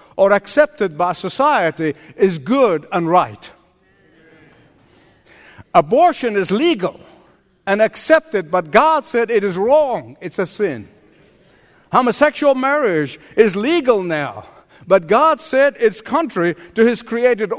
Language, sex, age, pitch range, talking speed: English, male, 60-79, 190-265 Hz, 120 wpm